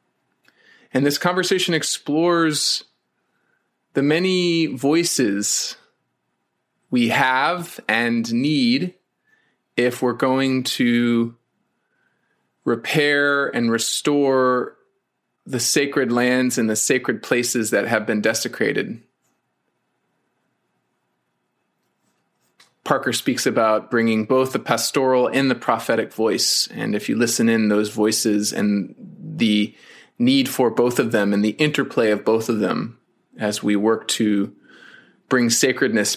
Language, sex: English, male